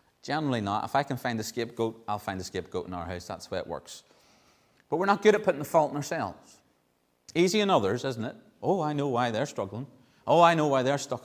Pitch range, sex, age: 110-175 Hz, male, 30-49